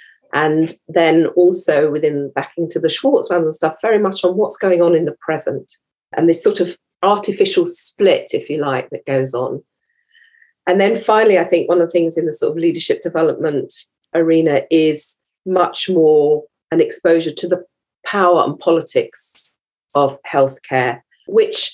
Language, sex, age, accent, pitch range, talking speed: English, female, 40-59, British, 160-215 Hz, 165 wpm